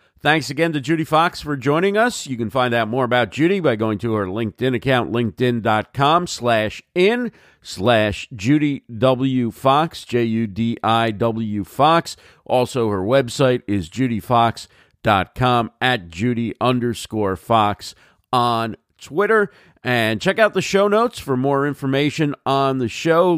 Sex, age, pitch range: male, 50-69, 105-135 Hz